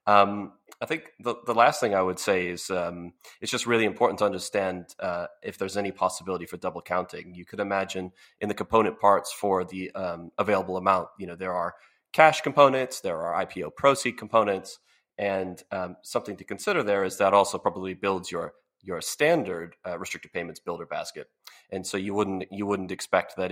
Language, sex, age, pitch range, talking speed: English, male, 30-49, 90-100 Hz, 195 wpm